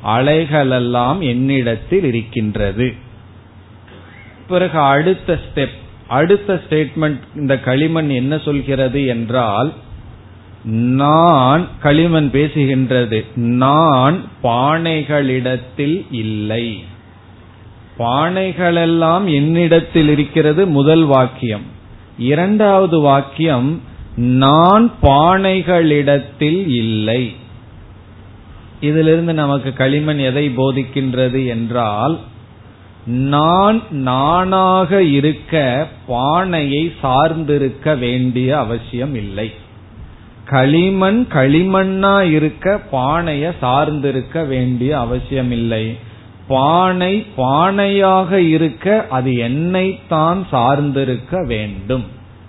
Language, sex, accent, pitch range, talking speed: Tamil, male, native, 120-160 Hz, 60 wpm